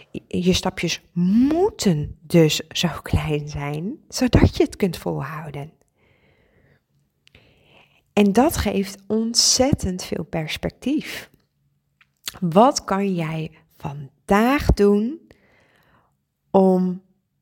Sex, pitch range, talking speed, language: female, 165-225 Hz, 85 wpm, Dutch